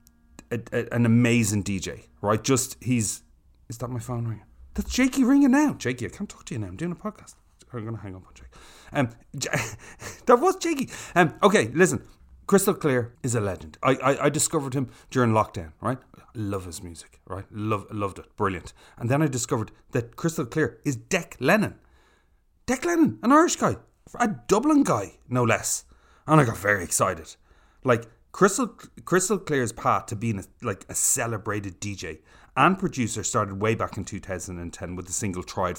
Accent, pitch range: Irish, 100-150 Hz